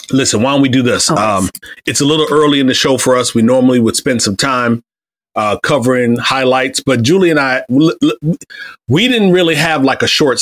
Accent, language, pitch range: American, English, 120-140 Hz